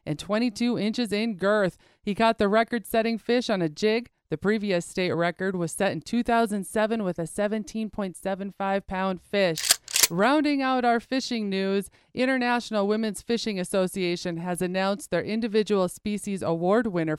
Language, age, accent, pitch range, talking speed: English, 40-59, American, 190-235 Hz, 145 wpm